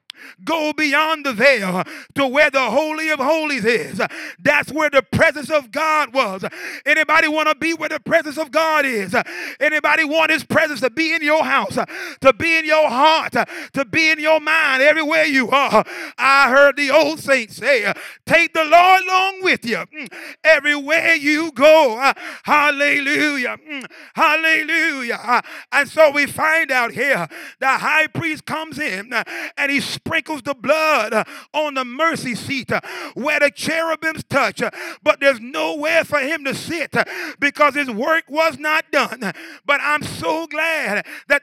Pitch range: 275-315 Hz